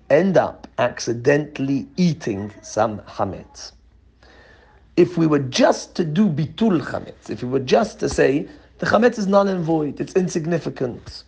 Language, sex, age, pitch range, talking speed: English, male, 40-59, 115-165 Hz, 150 wpm